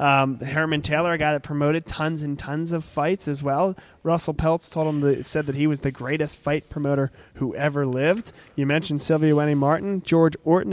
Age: 20-39